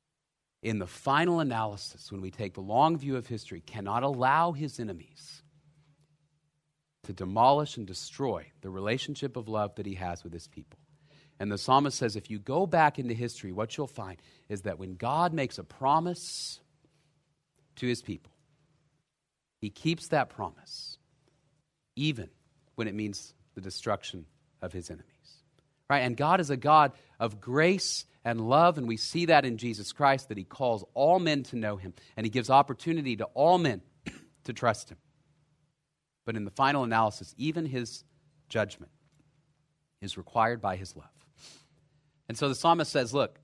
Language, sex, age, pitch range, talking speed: English, male, 40-59, 110-150 Hz, 165 wpm